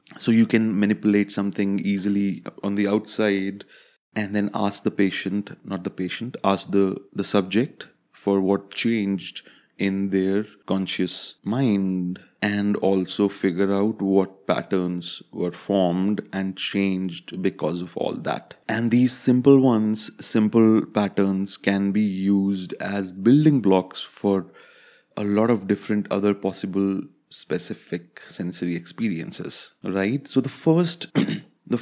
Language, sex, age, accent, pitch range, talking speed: English, male, 30-49, Indian, 95-110 Hz, 130 wpm